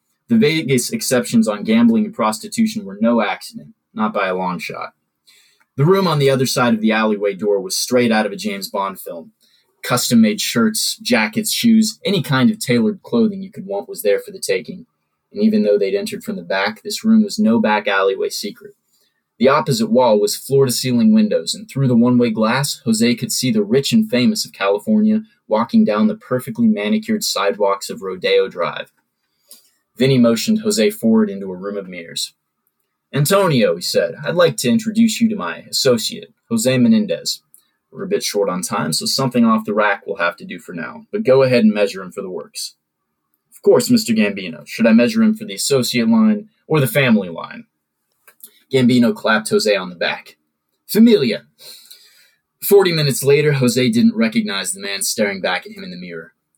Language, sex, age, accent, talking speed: English, male, 20-39, American, 190 wpm